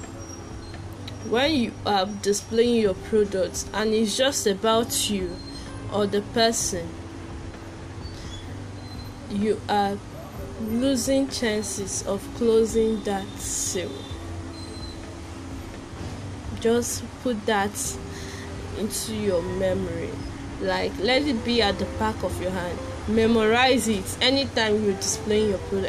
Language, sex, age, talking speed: English, female, 10-29, 105 wpm